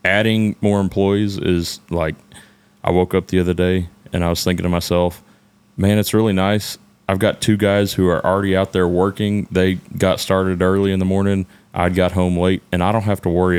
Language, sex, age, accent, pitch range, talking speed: English, male, 30-49, American, 85-100 Hz, 210 wpm